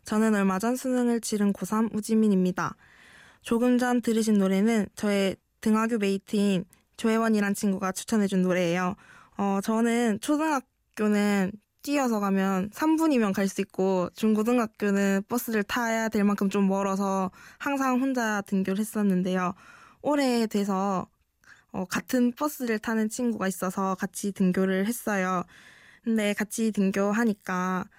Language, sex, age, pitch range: Korean, female, 20-39, 195-230 Hz